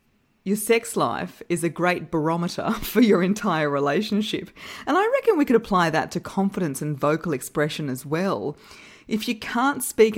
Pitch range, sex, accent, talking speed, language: 160-215 Hz, female, Australian, 170 wpm, English